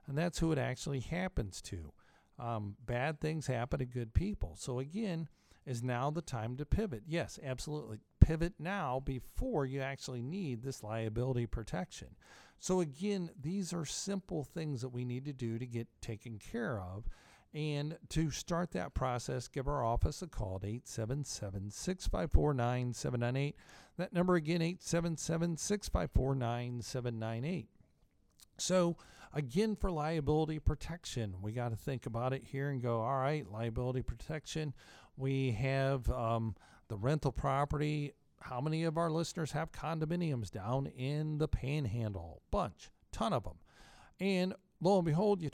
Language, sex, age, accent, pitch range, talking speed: English, male, 50-69, American, 120-160 Hz, 155 wpm